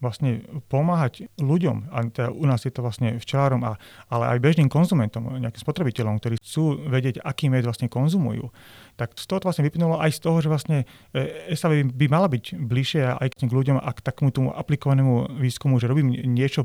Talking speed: 190 wpm